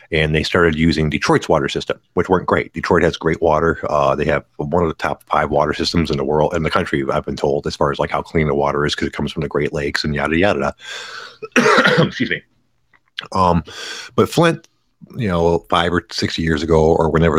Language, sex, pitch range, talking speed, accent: English, male, 80-105 Hz, 230 wpm, American